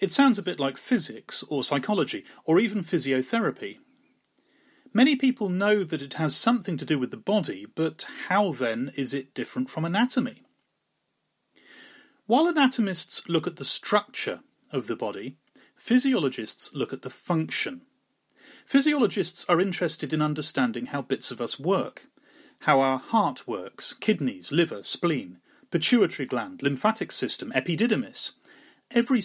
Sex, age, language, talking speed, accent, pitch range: male, 30-49, English, 140 wpm, British, 150-240 Hz